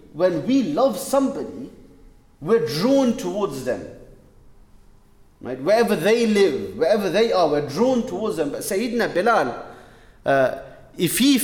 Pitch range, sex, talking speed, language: 145-220 Hz, male, 125 wpm, English